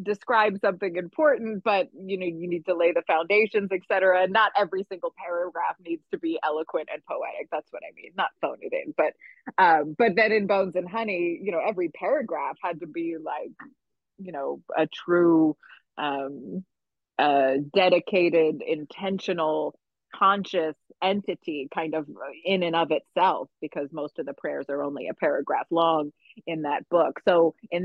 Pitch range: 160-200 Hz